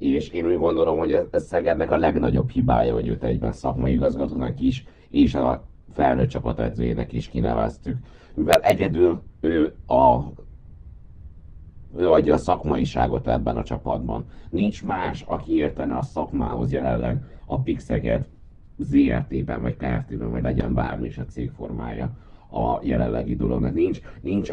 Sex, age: male, 60-79